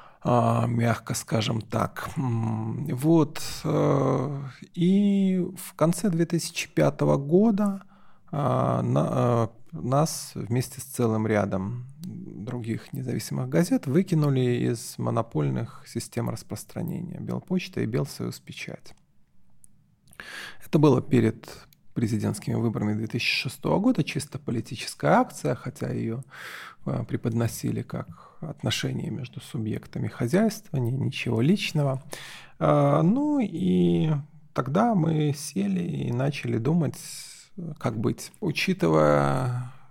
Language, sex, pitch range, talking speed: Russian, male, 115-165 Hz, 85 wpm